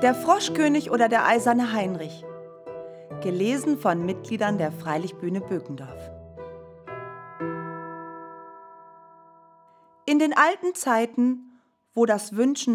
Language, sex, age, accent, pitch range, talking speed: German, female, 40-59, German, 165-250 Hz, 90 wpm